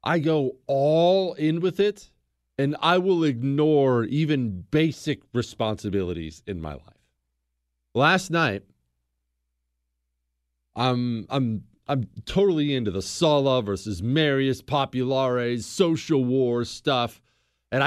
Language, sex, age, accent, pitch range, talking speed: English, male, 40-59, American, 110-170 Hz, 105 wpm